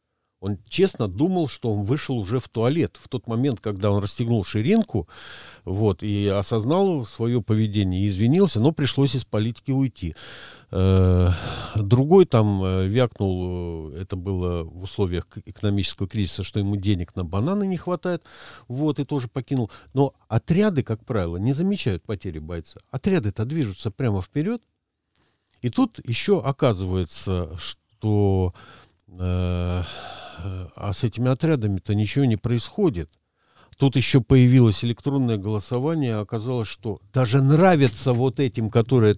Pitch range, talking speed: 100-135 Hz, 130 wpm